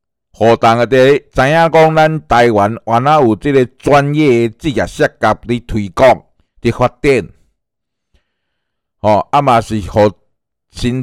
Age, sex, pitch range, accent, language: 60-79, male, 100-135 Hz, Malaysian, Chinese